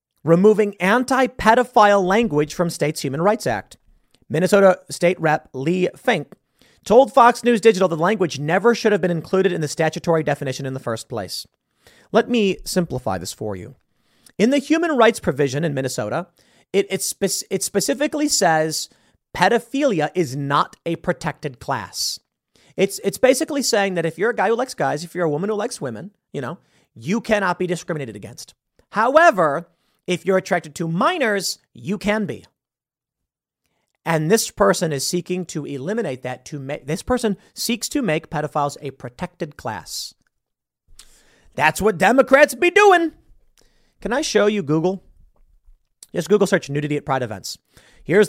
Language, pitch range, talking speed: English, 150-210 Hz, 160 wpm